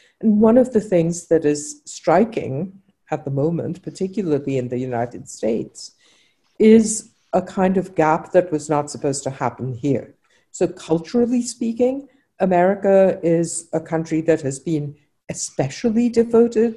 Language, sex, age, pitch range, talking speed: English, female, 60-79, 140-185 Hz, 145 wpm